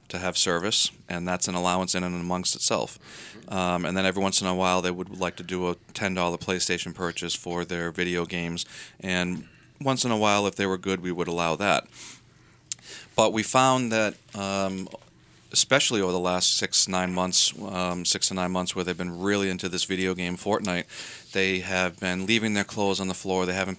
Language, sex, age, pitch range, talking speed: English, male, 40-59, 90-100 Hz, 205 wpm